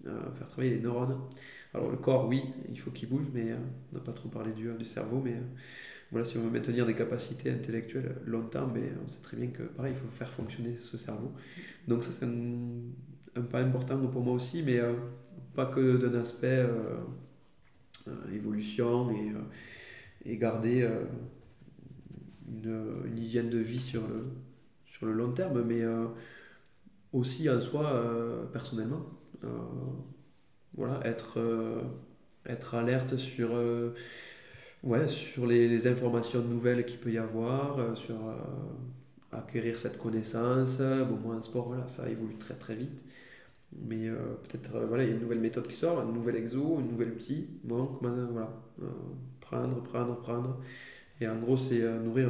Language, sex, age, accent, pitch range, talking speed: French, male, 20-39, French, 115-130 Hz, 180 wpm